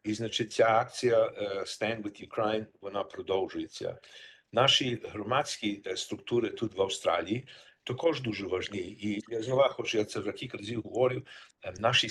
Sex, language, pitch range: male, Ukrainian, 110-125 Hz